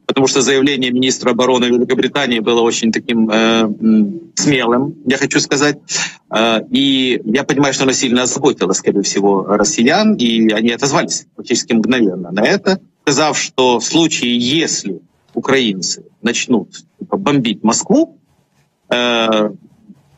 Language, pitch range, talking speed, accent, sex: Ukrainian, 115-150 Hz, 125 wpm, native, male